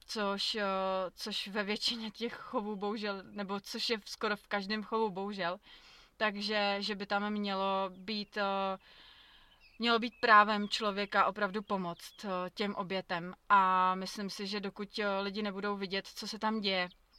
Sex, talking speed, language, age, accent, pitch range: female, 140 wpm, Czech, 30-49, native, 190-205 Hz